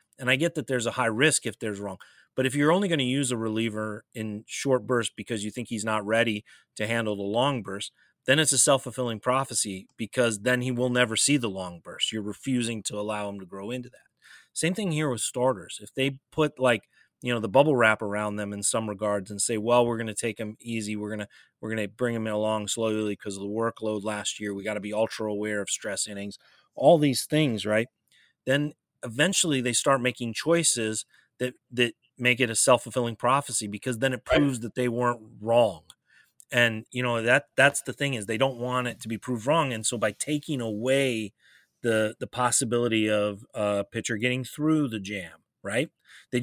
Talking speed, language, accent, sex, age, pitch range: 215 wpm, English, American, male, 30-49, 110-125 Hz